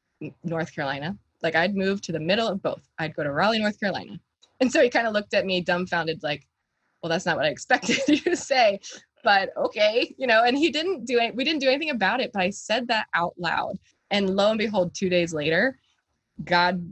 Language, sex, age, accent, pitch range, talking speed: English, female, 20-39, American, 165-215 Hz, 225 wpm